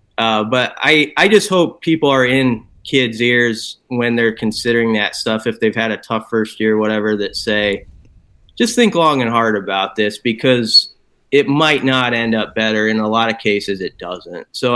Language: English